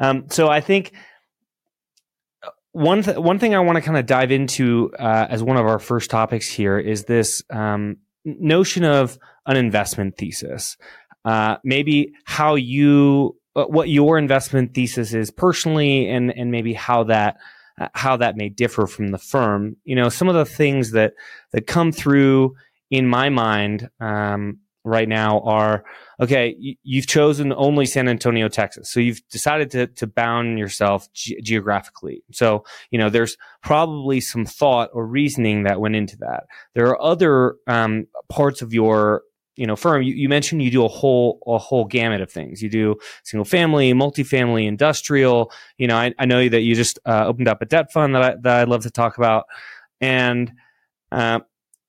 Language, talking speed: English, 175 wpm